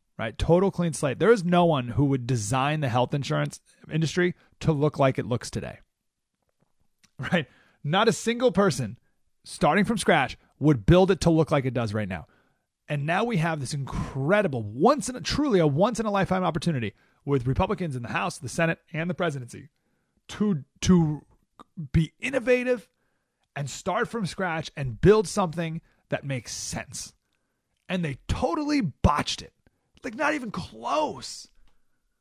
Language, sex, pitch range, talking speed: English, male, 135-220 Hz, 165 wpm